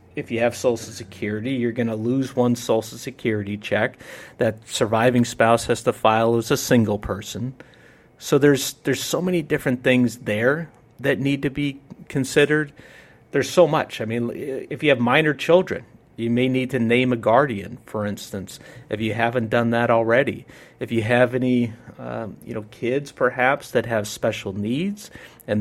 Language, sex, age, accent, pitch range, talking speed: English, male, 40-59, American, 115-135 Hz, 175 wpm